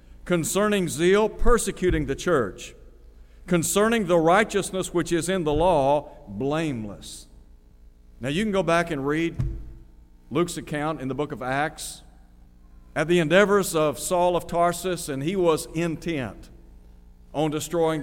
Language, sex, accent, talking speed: English, male, American, 135 wpm